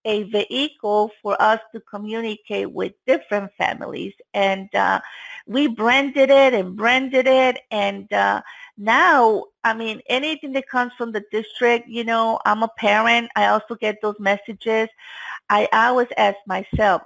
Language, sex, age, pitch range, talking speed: English, female, 50-69, 205-240 Hz, 150 wpm